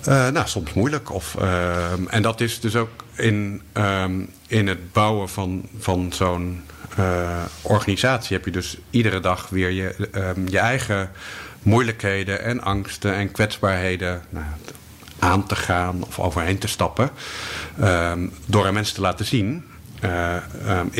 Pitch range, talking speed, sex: 90-110 Hz, 150 wpm, male